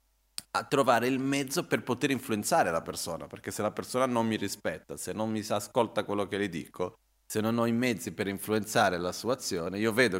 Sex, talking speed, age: male, 210 wpm, 30-49